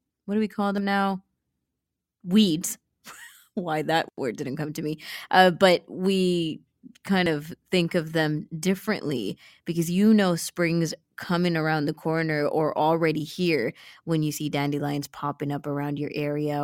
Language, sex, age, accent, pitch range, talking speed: English, female, 20-39, American, 155-200 Hz, 155 wpm